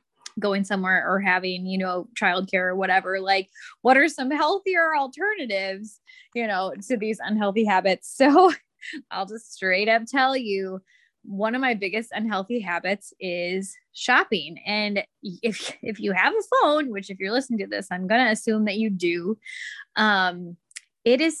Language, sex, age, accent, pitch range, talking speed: English, female, 20-39, American, 195-275 Hz, 165 wpm